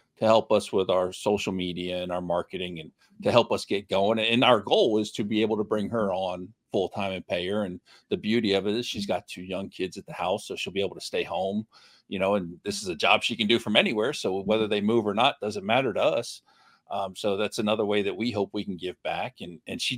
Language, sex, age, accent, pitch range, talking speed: English, male, 50-69, American, 100-120 Hz, 270 wpm